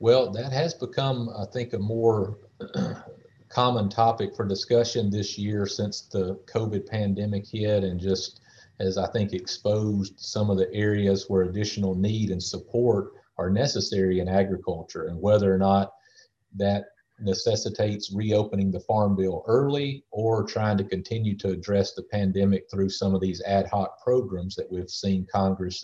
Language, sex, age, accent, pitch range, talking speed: English, male, 40-59, American, 95-110 Hz, 160 wpm